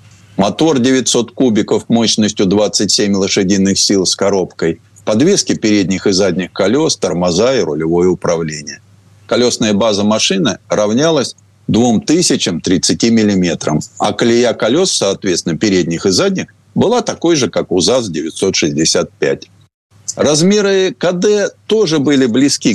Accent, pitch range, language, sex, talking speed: native, 100-145 Hz, Russian, male, 110 wpm